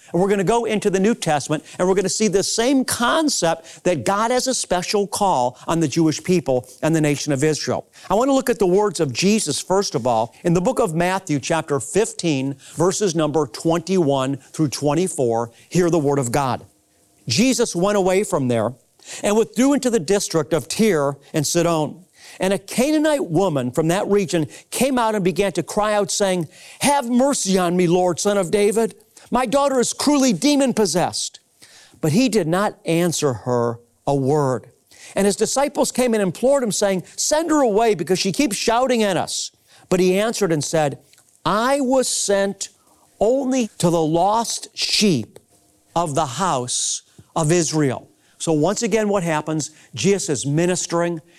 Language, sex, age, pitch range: English, male, 50-69, 155-220 Hz